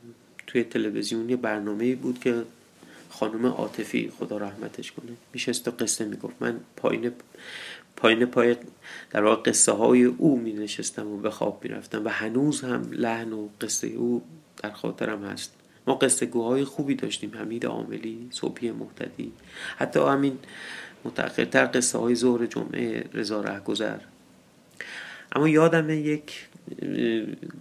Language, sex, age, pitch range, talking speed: Persian, male, 30-49, 105-125 Hz, 125 wpm